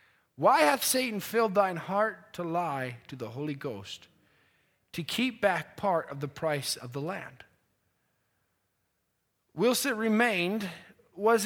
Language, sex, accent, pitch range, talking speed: English, male, American, 135-210 Hz, 135 wpm